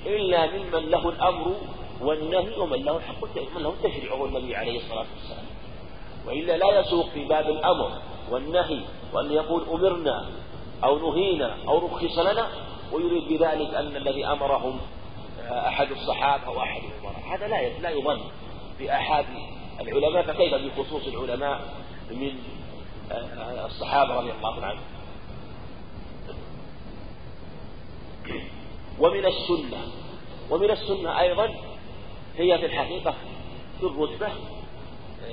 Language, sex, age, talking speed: Arabic, male, 40-59, 110 wpm